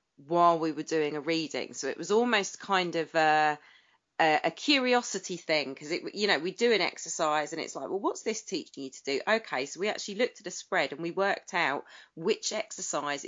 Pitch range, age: 165-220 Hz, 30-49